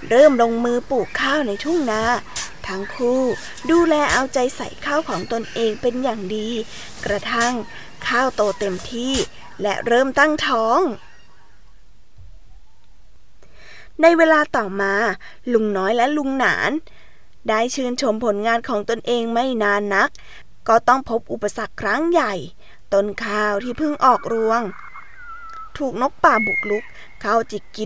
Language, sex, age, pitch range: Thai, female, 20-39, 210-265 Hz